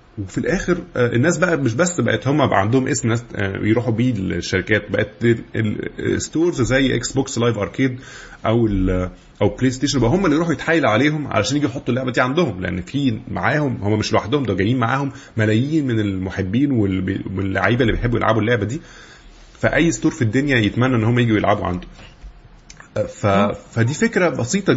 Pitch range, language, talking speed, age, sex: 110-155 Hz, Arabic, 165 wpm, 20-39, male